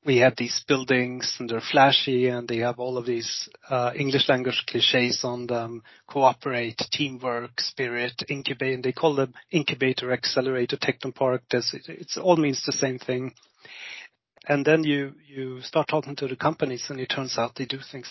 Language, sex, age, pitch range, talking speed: English, male, 30-49, 120-140 Hz, 180 wpm